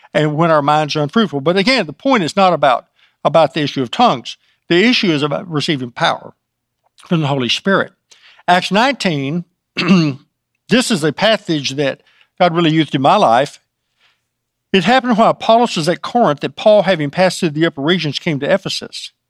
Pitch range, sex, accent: 140-185 Hz, male, American